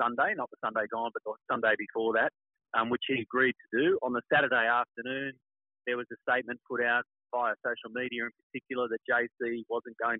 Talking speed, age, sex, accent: 205 wpm, 30-49, male, Australian